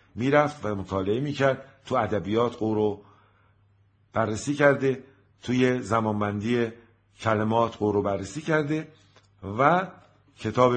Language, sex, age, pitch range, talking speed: Persian, male, 50-69, 100-120 Hz, 105 wpm